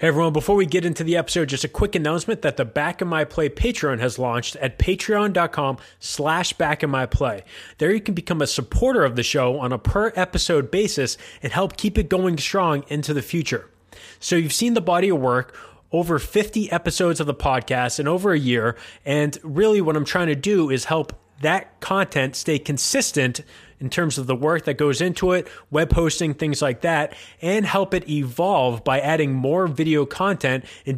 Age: 20-39